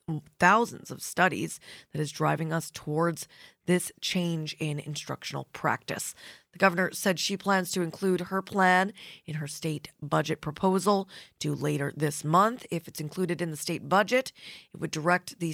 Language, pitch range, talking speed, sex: English, 155-195 Hz, 160 wpm, female